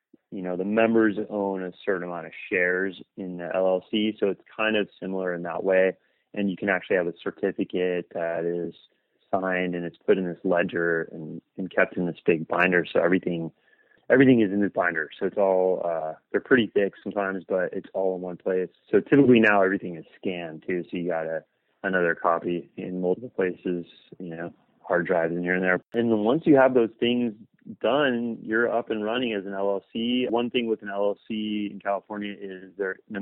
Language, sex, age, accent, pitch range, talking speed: English, male, 30-49, American, 90-105 Hz, 205 wpm